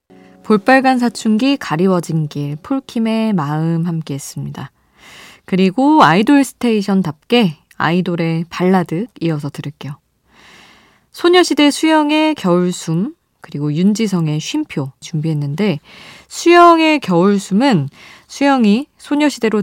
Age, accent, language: 20-39, native, Korean